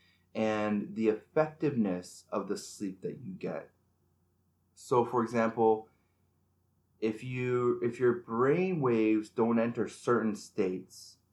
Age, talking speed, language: 20-39, 115 wpm, English